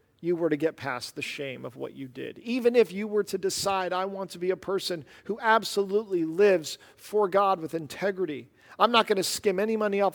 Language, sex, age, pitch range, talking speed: English, male, 40-59, 150-210 Hz, 220 wpm